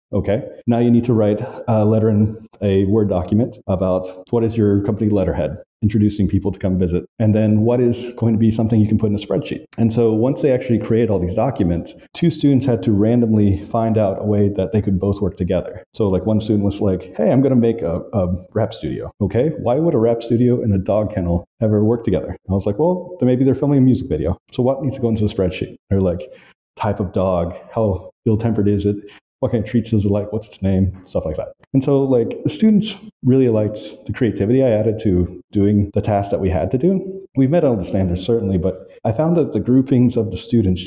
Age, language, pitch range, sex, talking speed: 40-59, English, 100-120 Hz, male, 245 wpm